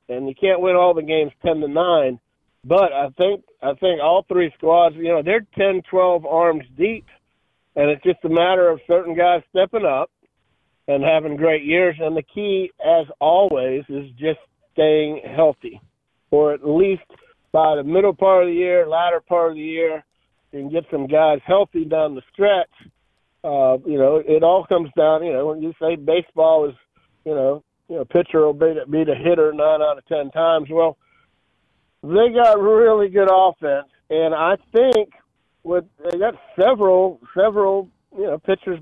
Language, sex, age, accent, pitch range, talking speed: English, male, 50-69, American, 155-185 Hz, 180 wpm